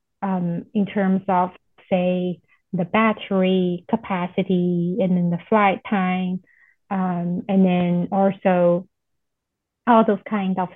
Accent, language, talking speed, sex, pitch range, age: American, English, 115 wpm, female, 180-210 Hz, 30-49